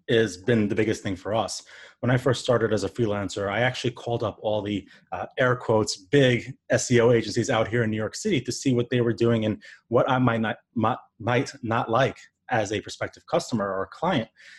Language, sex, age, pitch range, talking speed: English, male, 30-49, 110-130 Hz, 215 wpm